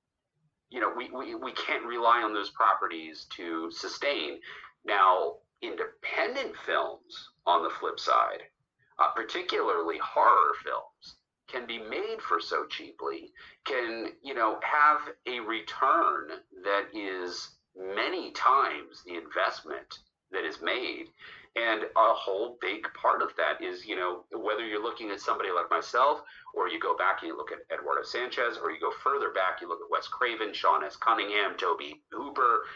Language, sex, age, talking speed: English, male, 40-59, 155 wpm